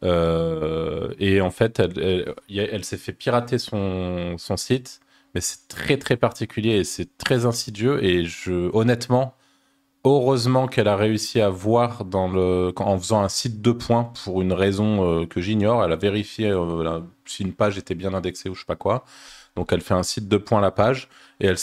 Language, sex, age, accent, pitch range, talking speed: French, male, 20-39, French, 100-130 Hz, 195 wpm